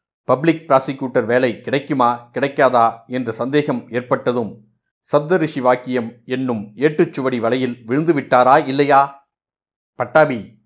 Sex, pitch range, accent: male, 120-145 Hz, native